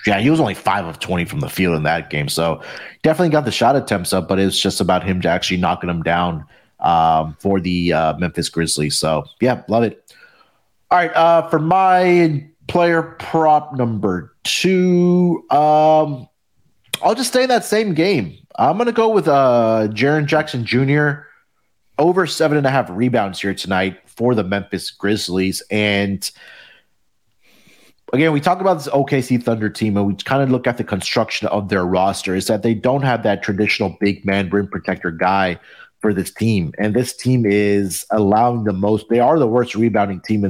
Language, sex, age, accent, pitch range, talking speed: English, male, 30-49, American, 100-150 Hz, 190 wpm